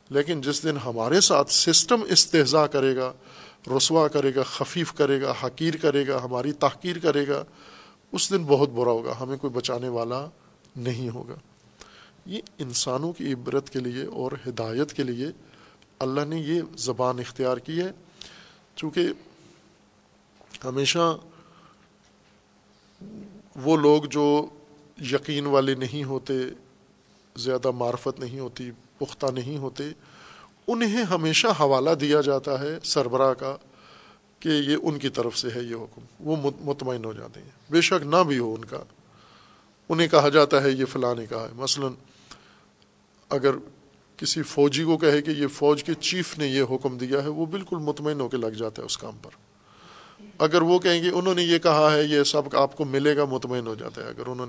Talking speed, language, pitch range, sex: 165 wpm, Urdu, 130-155 Hz, male